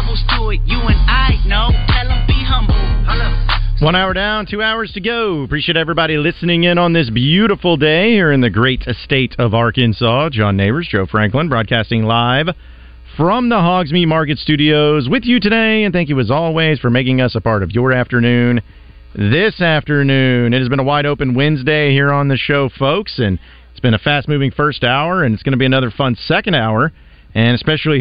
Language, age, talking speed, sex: English, 40-59, 170 wpm, male